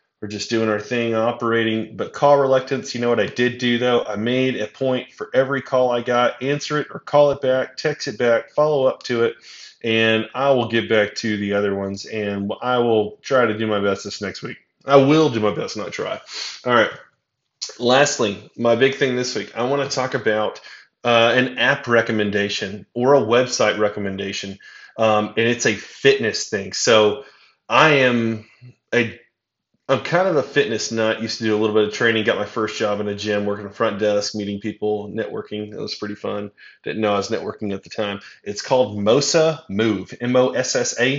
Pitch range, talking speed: 105-125 Hz, 205 wpm